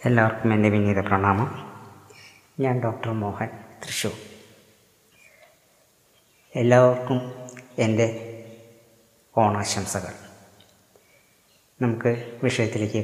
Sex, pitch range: female, 105-130 Hz